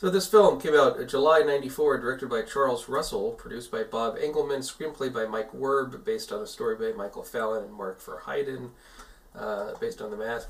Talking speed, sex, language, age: 195 wpm, male, English, 40-59